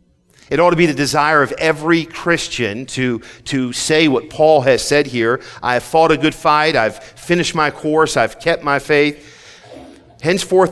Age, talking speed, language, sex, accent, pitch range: 40-59, 180 wpm, English, male, American, 115-155 Hz